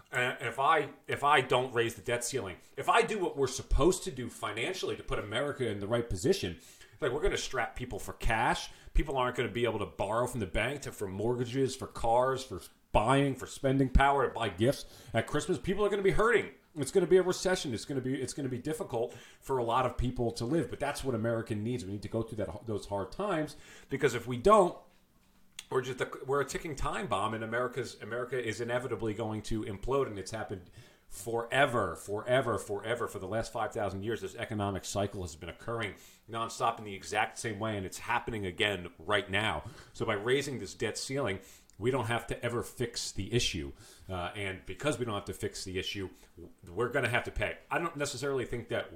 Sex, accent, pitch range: male, American, 100-130 Hz